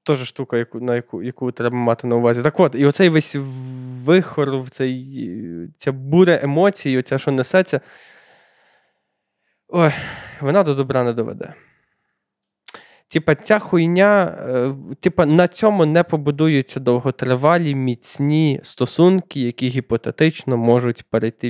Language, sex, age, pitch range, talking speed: Ukrainian, male, 20-39, 125-175 Hz, 120 wpm